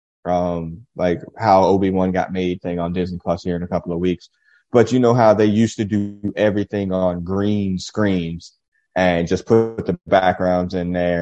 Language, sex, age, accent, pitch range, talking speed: English, male, 30-49, American, 90-110 Hz, 185 wpm